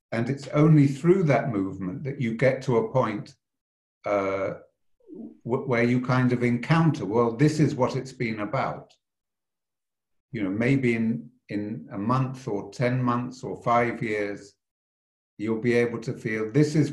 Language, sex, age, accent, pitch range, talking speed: Portuguese, male, 60-79, British, 115-140 Hz, 165 wpm